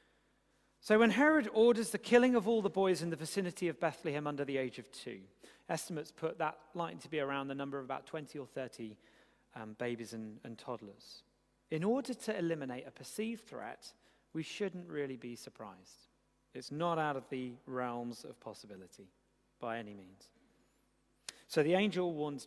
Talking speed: 175 wpm